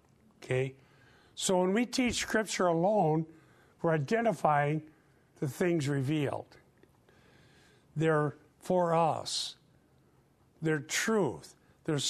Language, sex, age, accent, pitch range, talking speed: English, male, 50-69, American, 140-180 Hz, 85 wpm